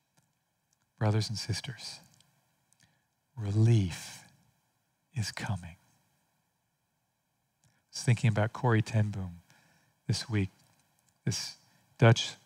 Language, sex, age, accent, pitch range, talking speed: English, male, 40-59, American, 105-140 Hz, 80 wpm